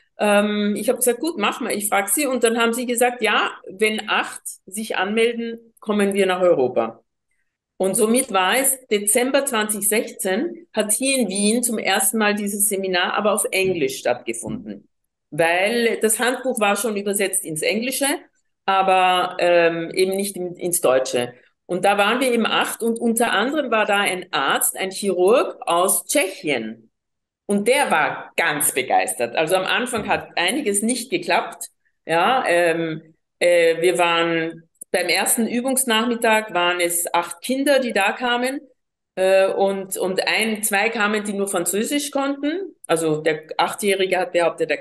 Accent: German